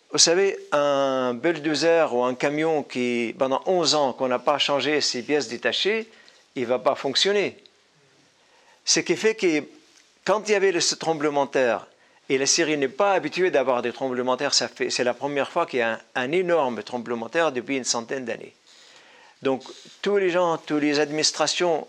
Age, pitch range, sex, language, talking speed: 50-69, 130-175 Hz, male, French, 195 wpm